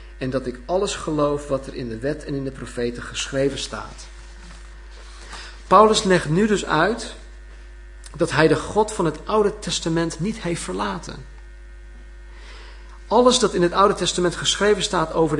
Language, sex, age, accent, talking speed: Dutch, male, 50-69, Dutch, 160 wpm